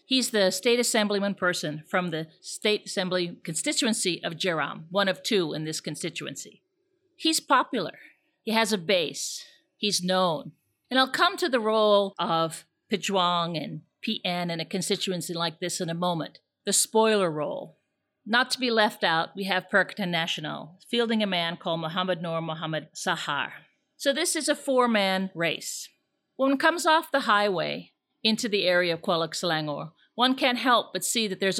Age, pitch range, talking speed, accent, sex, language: 50-69, 175-240 Hz, 165 wpm, American, female, English